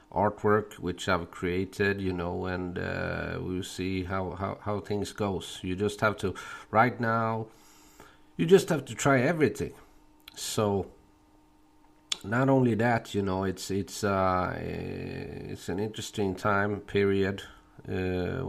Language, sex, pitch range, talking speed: English, male, 90-105 Hz, 135 wpm